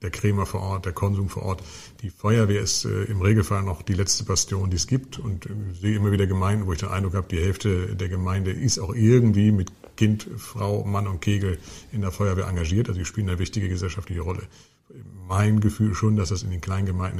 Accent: German